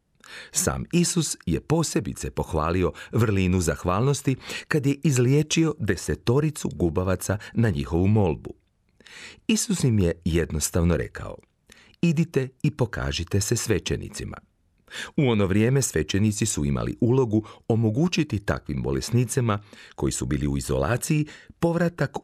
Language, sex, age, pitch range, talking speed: Croatian, male, 40-59, 85-140 Hz, 110 wpm